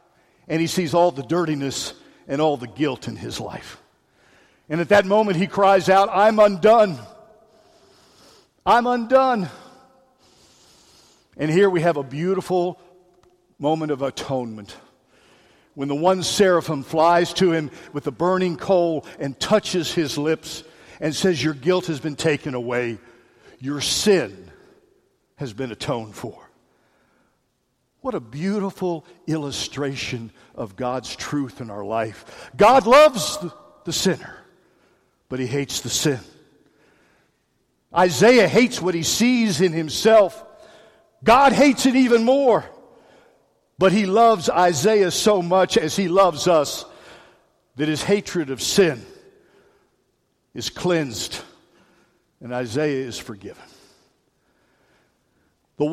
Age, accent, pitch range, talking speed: 50-69, American, 145-200 Hz, 125 wpm